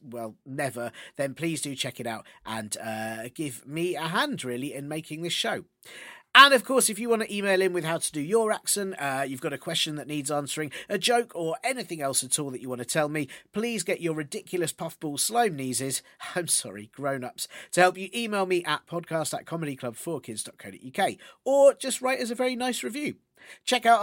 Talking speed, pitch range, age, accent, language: 210 wpm, 125-185 Hz, 40-59, British, English